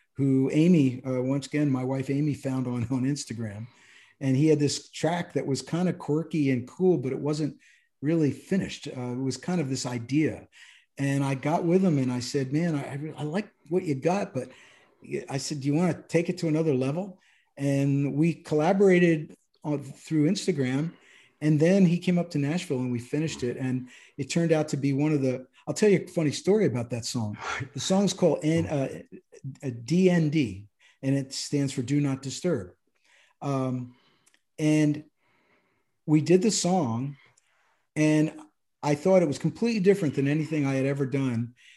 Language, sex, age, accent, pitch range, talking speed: English, male, 50-69, American, 135-175 Hz, 190 wpm